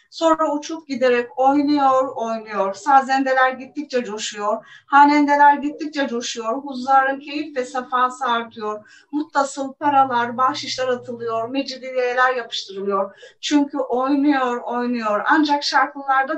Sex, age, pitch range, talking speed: female, 40-59, 235-285 Hz, 100 wpm